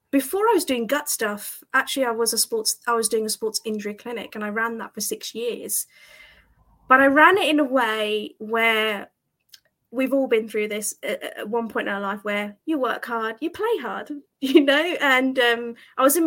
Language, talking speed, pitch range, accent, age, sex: English, 215 wpm, 215-265 Hz, British, 30-49, female